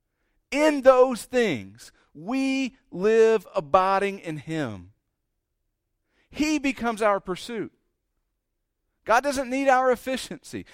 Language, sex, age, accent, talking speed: English, male, 50-69, American, 95 wpm